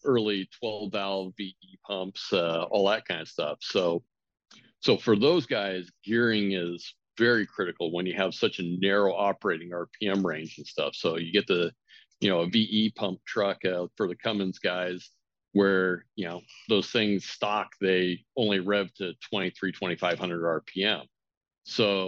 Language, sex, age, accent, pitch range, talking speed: English, male, 50-69, American, 90-105 Hz, 165 wpm